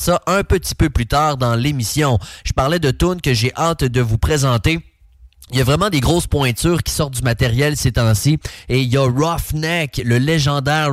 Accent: Canadian